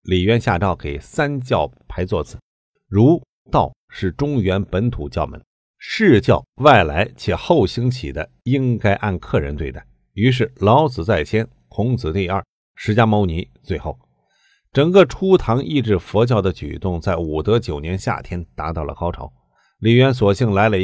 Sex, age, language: male, 50-69, Chinese